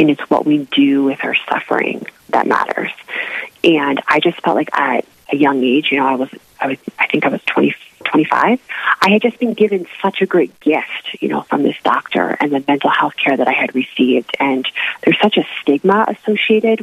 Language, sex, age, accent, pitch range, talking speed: English, female, 40-59, American, 145-170 Hz, 205 wpm